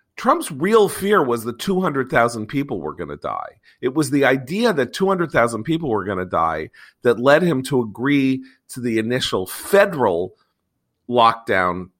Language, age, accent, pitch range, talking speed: English, 50-69, American, 130-190 Hz, 160 wpm